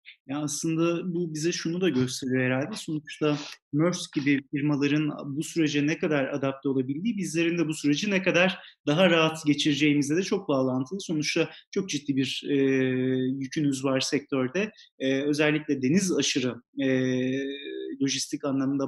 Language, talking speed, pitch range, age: Turkish, 145 wpm, 140-185 Hz, 30-49